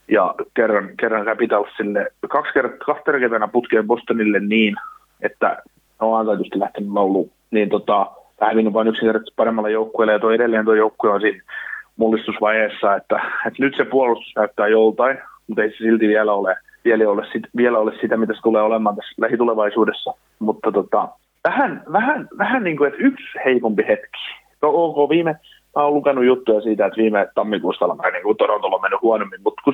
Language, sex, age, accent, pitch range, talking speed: Finnish, male, 30-49, native, 110-145 Hz, 165 wpm